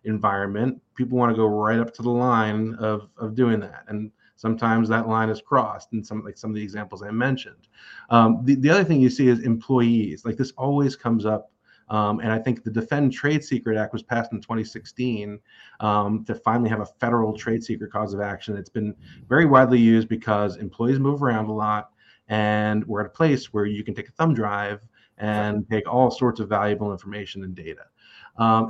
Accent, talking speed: American, 210 wpm